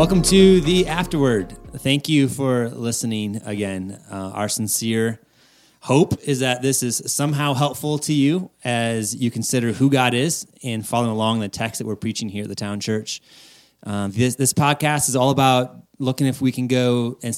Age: 30-49